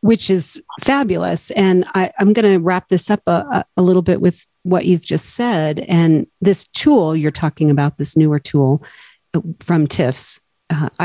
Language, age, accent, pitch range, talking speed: English, 40-59, American, 150-195 Hz, 175 wpm